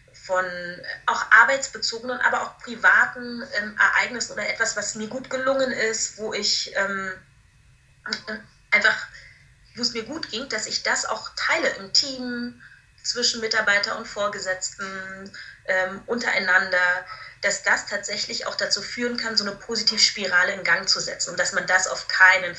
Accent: German